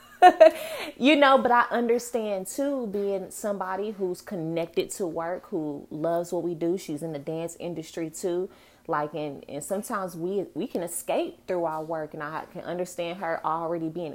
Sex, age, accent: female, 20-39, American